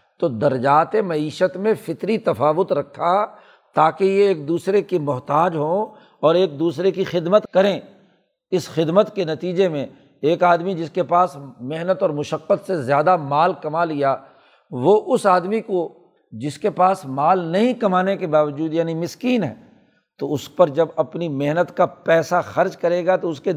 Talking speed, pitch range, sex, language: 170 wpm, 160-195 Hz, male, Urdu